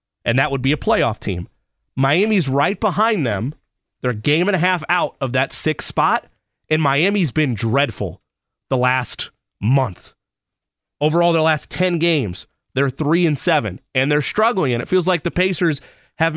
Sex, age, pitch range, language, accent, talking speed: male, 30-49, 130-165 Hz, English, American, 175 wpm